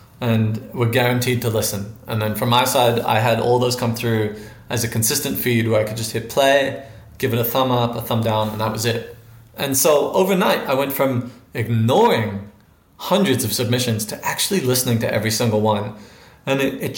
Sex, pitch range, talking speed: male, 110-130 Hz, 205 wpm